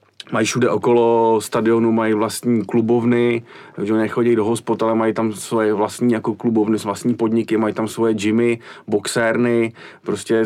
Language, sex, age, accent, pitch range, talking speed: Czech, male, 40-59, native, 105-115 Hz, 155 wpm